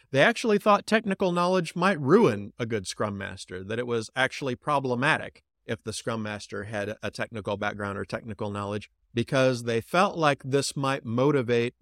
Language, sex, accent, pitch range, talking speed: English, male, American, 105-130 Hz, 175 wpm